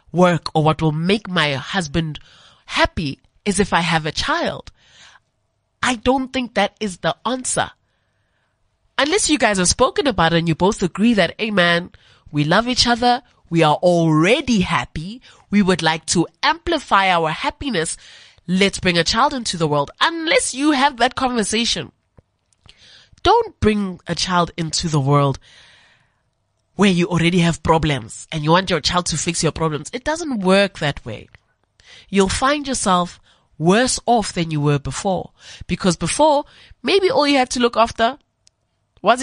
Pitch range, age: 155-235 Hz, 20-39